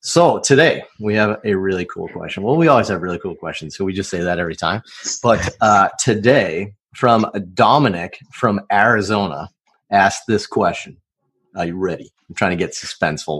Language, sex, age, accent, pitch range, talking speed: English, male, 30-49, American, 95-115 Hz, 180 wpm